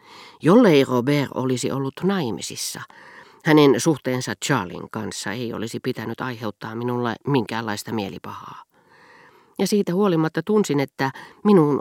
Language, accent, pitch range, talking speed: Finnish, native, 125-165 Hz, 110 wpm